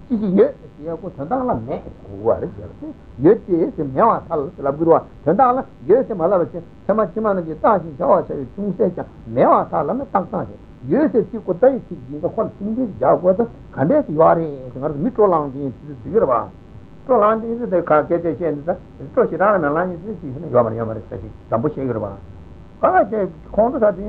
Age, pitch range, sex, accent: 60-79, 145-215 Hz, male, Indian